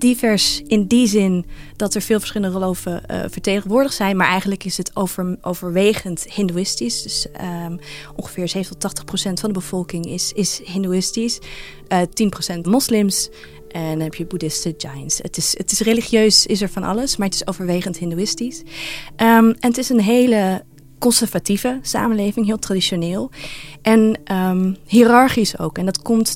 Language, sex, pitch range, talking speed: Dutch, female, 175-205 Hz, 155 wpm